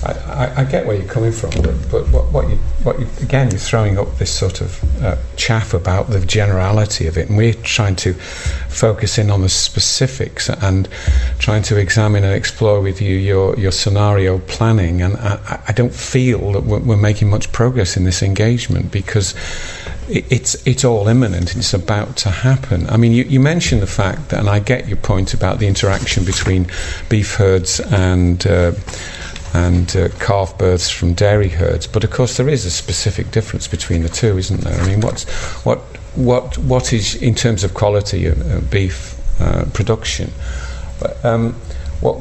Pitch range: 90-110 Hz